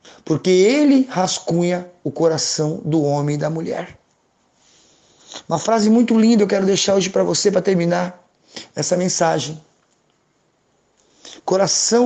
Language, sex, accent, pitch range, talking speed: Portuguese, male, Brazilian, 160-190 Hz, 125 wpm